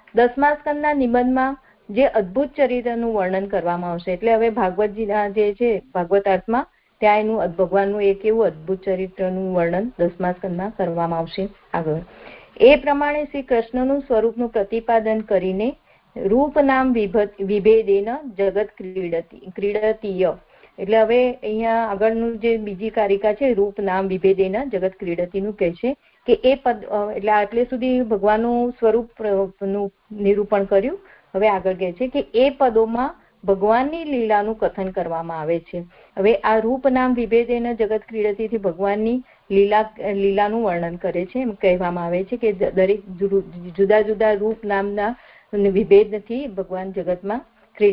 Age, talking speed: 50-69, 90 wpm